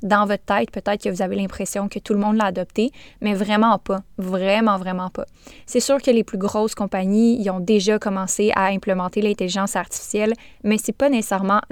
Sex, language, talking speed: female, French, 205 wpm